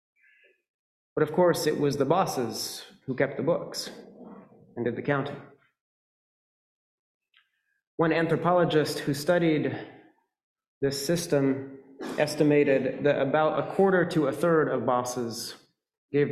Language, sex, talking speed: English, male, 120 wpm